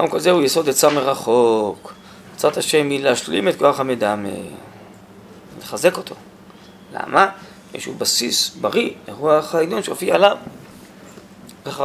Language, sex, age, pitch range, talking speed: Hebrew, male, 20-39, 140-195 Hz, 120 wpm